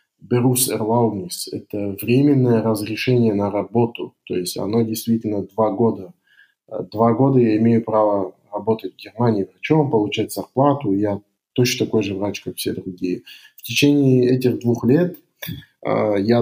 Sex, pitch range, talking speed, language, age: male, 100-125 Hz, 145 wpm, Russian, 20-39